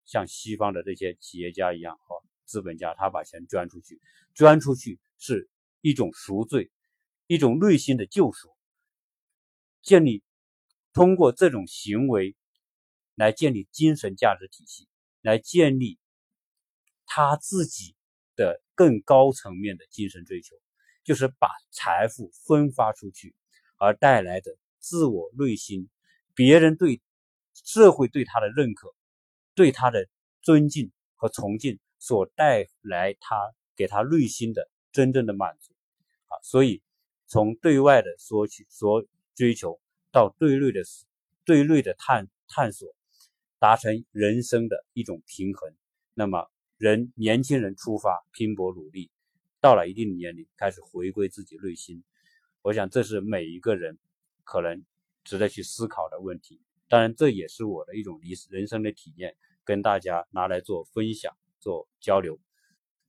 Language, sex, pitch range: Chinese, male, 100-155 Hz